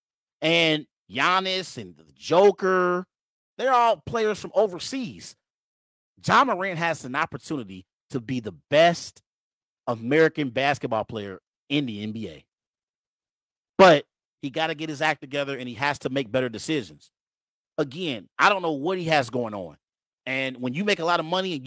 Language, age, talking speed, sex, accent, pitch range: English, 30-49, 160 wpm, male, American, 135-205 Hz